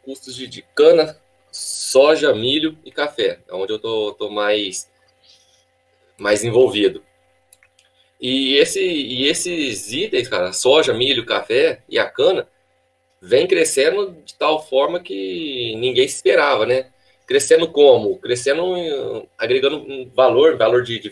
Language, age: Portuguese, 20-39